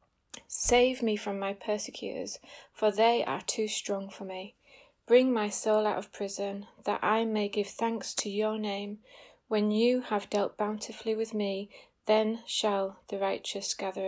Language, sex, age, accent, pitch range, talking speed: English, female, 30-49, British, 200-230 Hz, 160 wpm